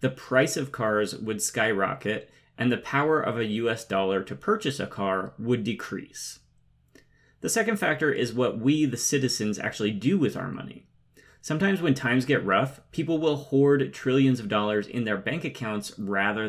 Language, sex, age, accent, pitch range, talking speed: English, male, 30-49, American, 105-135 Hz, 175 wpm